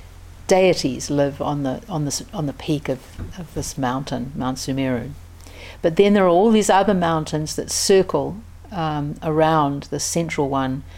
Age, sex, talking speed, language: 60-79, female, 165 wpm, English